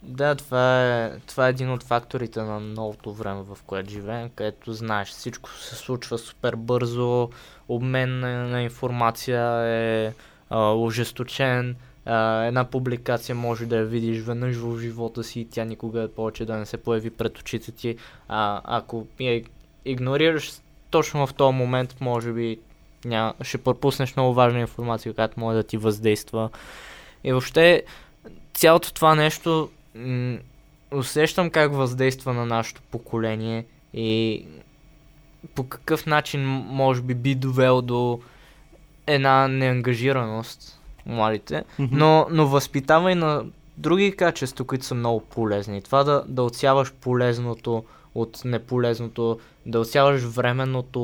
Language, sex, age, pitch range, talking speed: Bulgarian, male, 20-39, 115-135 Hz, 135 wpm